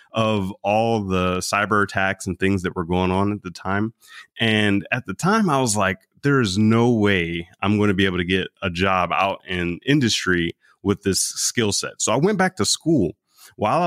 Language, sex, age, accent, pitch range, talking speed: English, male, 30-49, American, 90-115 Hz, 205 wpm